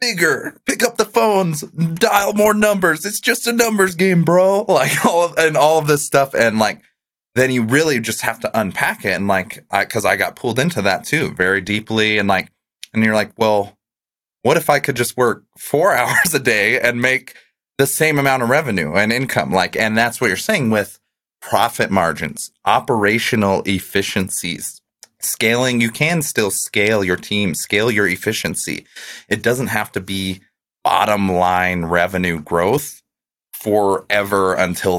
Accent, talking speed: American, 170 wpm